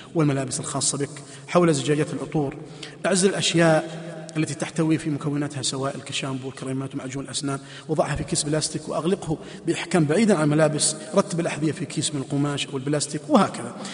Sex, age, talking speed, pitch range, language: male, 30-49, 150 wpm, 145-170 Hz, Arabic